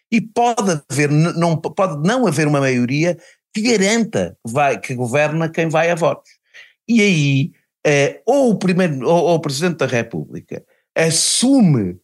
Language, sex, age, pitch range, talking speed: Portuguese, male, 50-69, 130-185 Hz, 120 wpm